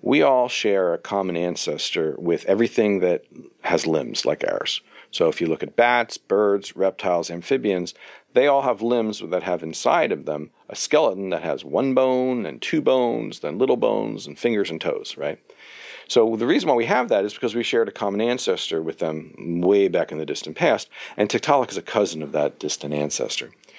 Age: 50-69